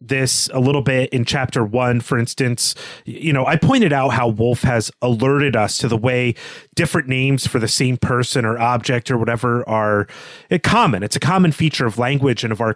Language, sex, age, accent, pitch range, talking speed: English, male, 30-49, American, 115-150 Hz, 200 wpm